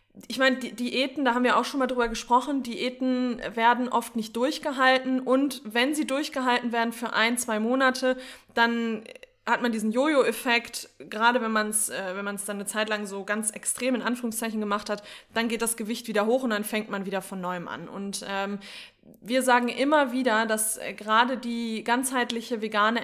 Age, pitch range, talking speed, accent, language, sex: 20-39, 220-260 Hz, 180 wpm, German, German, female